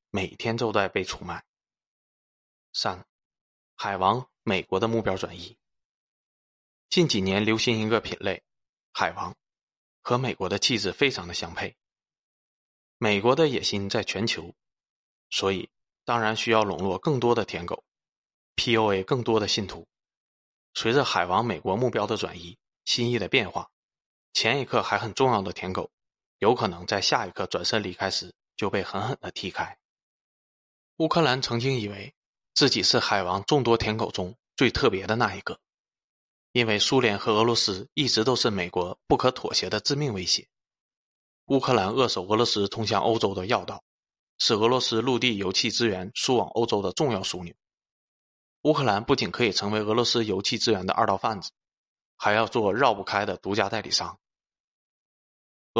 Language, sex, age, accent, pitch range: Chinese, male, 20-39, native, 95-120 Hz